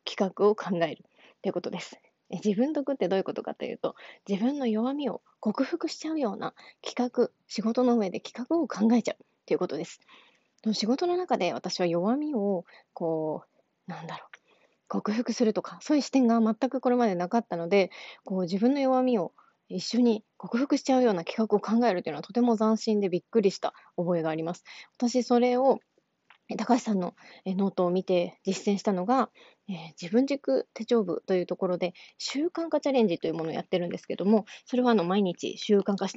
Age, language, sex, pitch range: 20-39, Japanese, female, 180-235 Hz